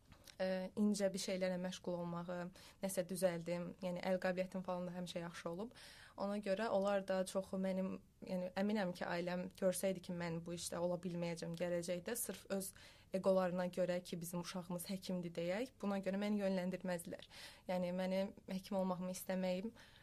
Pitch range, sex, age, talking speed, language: 180-205 Hz, female, 20-39, 155 wpm, English